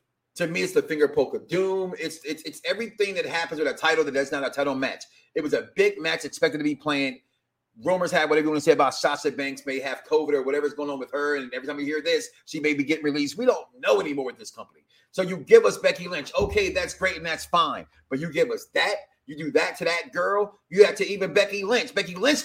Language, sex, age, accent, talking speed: English, male, 30-49, American, 265 wpm